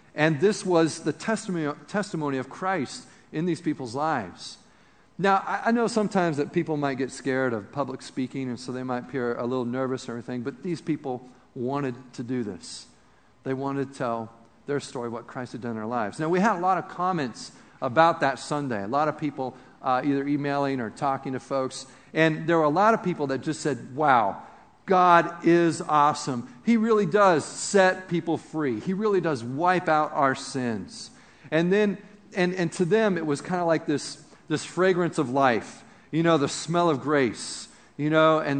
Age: 50-69